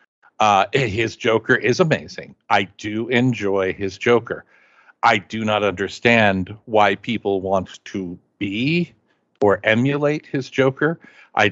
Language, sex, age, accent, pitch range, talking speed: English, male, 50-69, American, 100-130 Hz, 125 wpm